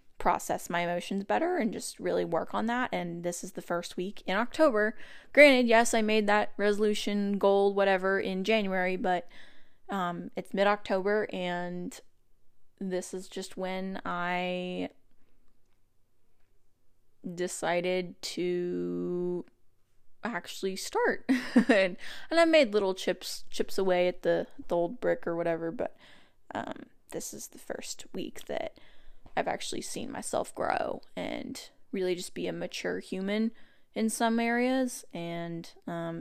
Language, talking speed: English, 135 wpm